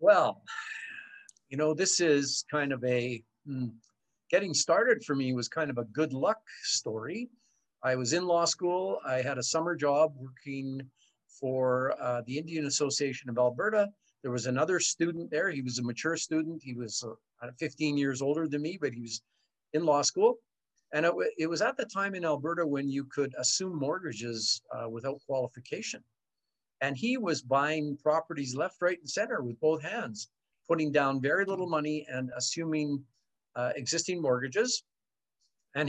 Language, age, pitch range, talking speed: English, 50-69, 130-170 Hz, 170 wpm